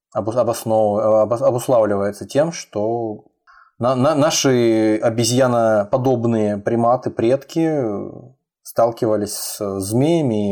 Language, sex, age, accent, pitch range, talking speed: Russian, male, 20-39, native, 100-120 Hz, 55 wpm